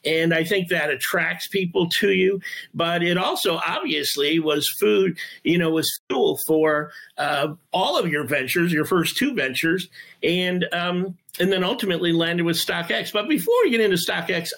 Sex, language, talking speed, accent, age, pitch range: male, English, 175 wpm, American, 50-69, 155-180 Hz